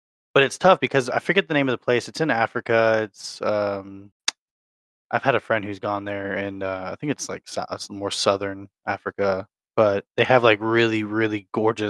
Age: 20-39